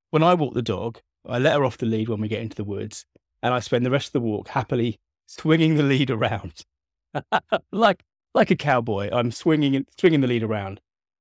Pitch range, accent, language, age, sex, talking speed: 100-140 Hz, British, English, 30-49, male, 215 wpm